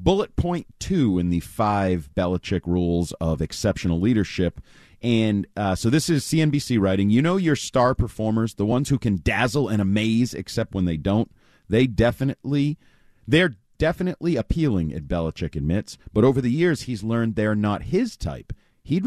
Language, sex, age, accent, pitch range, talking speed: English, male, 40-59, American, 95-140 Hz, 165 wpm